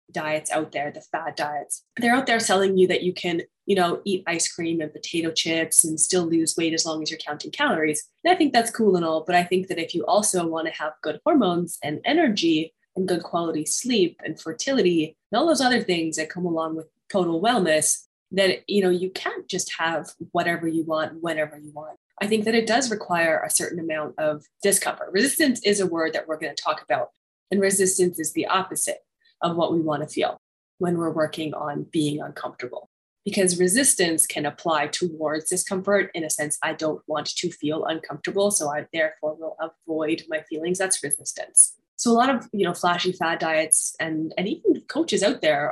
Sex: female